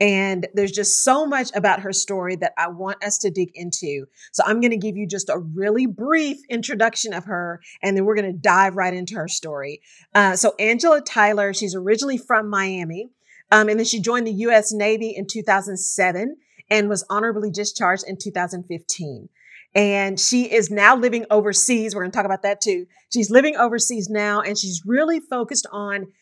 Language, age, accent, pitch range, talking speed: English, 40-59, American, 185-230 Hz, 190 wpm